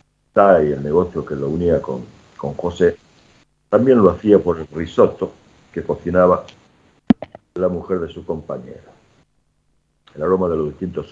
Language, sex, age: Spanish, male, 60-79